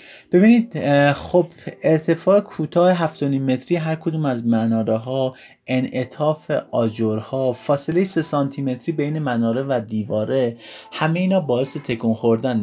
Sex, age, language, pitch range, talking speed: male, 30-49, Persian, 115-170 Hz, 130 wpm